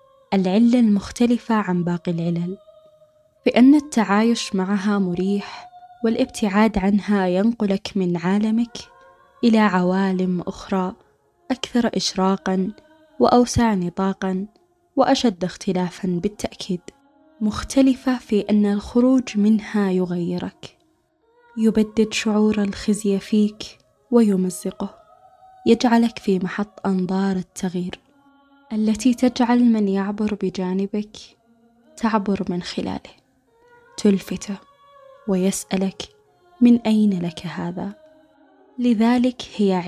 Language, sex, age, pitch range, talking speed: Arabic, female, 20-39, 190-255 Hz, 85 wpm